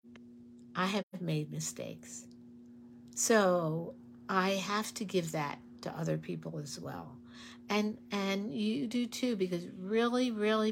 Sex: female